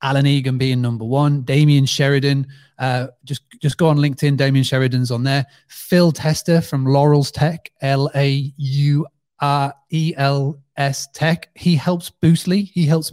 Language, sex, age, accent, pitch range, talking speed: English, male, 30-49, British, 135-160 Hz, 135 wpm